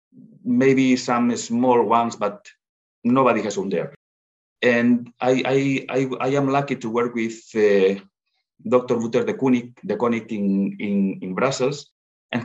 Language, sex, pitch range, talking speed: English, male, 110-140 Hz, 140 wpm